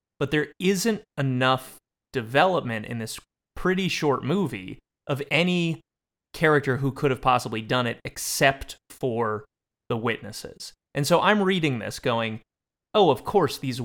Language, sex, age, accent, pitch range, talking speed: English, male, 30-49, American, 120-145 Hz, 145 wpm